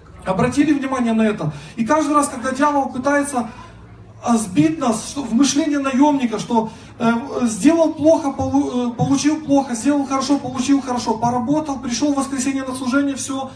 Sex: male